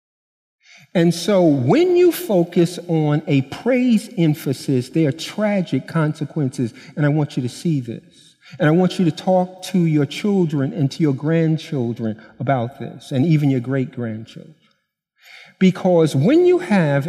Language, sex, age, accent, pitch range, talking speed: English, male, 50-69, American, 145-195 Hz, 150 wpm